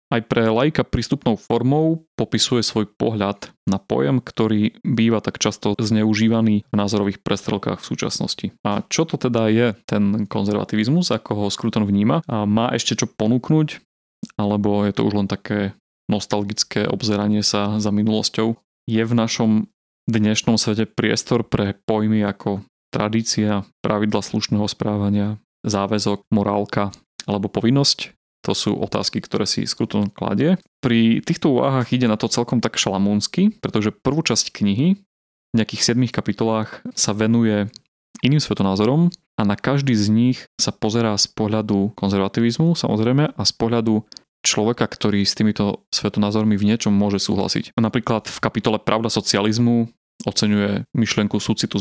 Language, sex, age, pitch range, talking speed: Slovak, male, 30-49, 105-120 Hz, 140 wpm